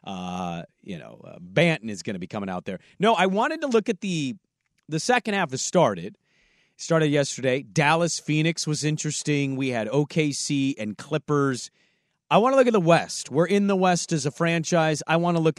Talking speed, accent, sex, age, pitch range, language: 205 wpm, American, male, 40-59, 140-185 Hz, English